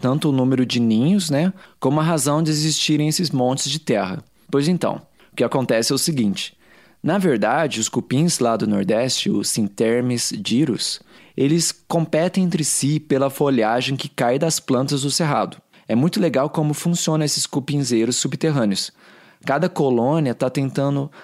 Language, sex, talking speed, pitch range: Portuguese, male, 160 wpm, 125-165 Hz